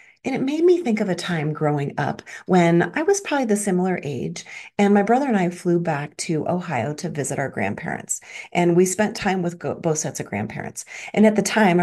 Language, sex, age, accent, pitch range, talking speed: English, female, 40-59, American, 155-205 Hz, 220 wpm